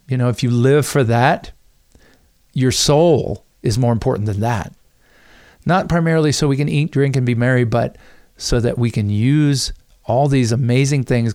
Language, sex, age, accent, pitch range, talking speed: English, male, 50-69, American, 120-160 Hz, 180 wpm